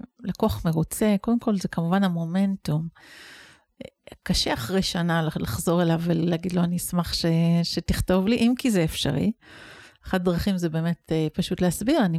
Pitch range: 175-230 Hz